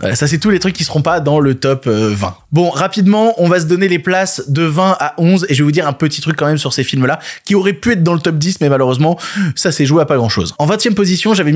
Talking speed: 305 wpm